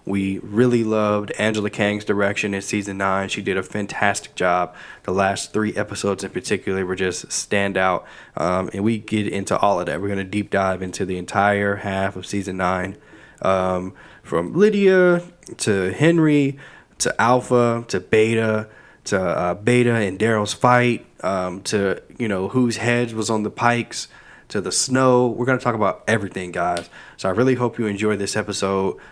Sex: male